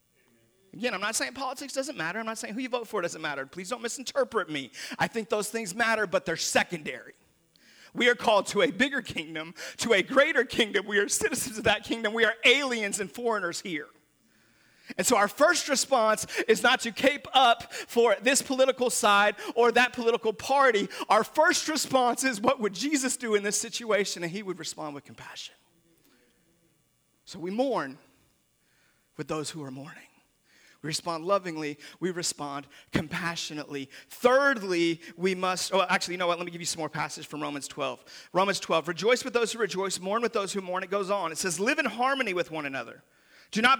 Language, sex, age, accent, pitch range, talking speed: English, male, 40-59, American, 165-245 Hz, 195 wpm